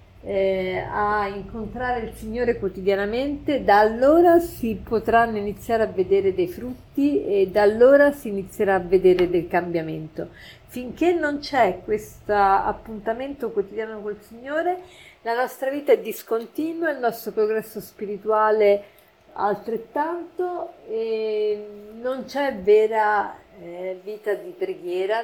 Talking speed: 120 wpm